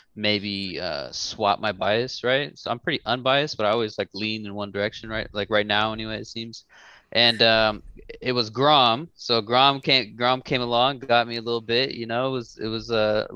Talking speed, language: 210 wpm, English